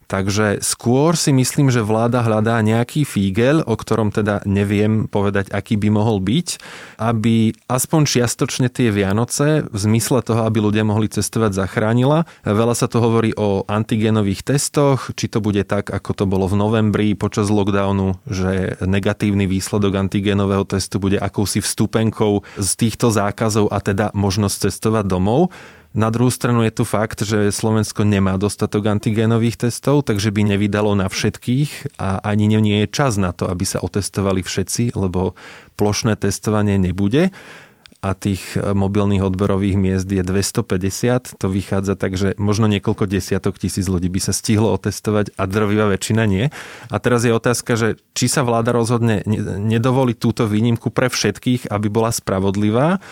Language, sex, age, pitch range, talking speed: Slovak, male, 20-39, 100-120 Hz, 155 wpm